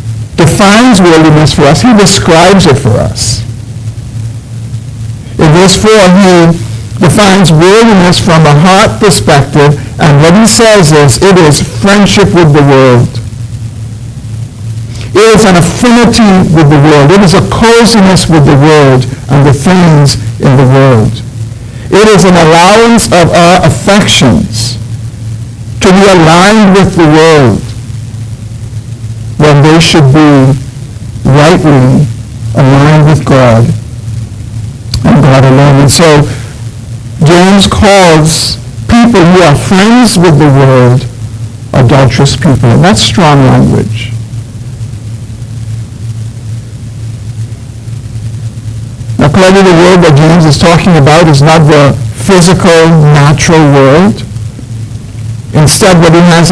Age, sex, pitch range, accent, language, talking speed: 60-79, male, 115-170 Hz, American, English, 120 wpm